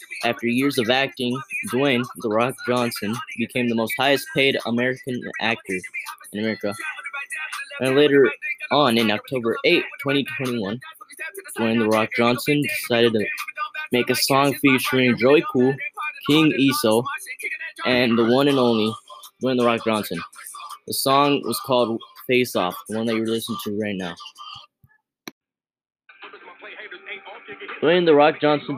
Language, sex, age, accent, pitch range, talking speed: English, male, 10-29, American, 115-150 Hz, 135 wpm